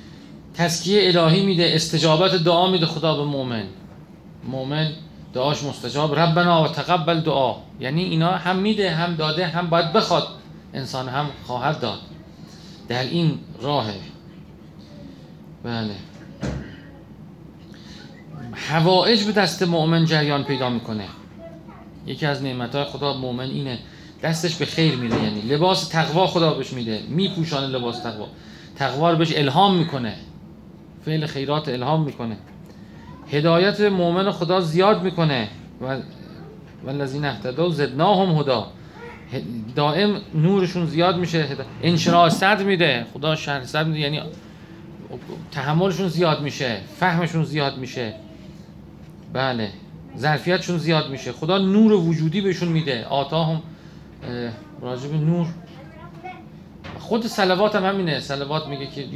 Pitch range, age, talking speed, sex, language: 135-175 Hz, 40-59, 120 wpm, male, Persian